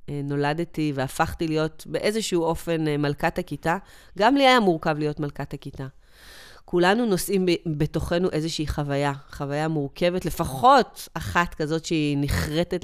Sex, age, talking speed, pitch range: female, 30-49, 120 wpm, 150-190 Hz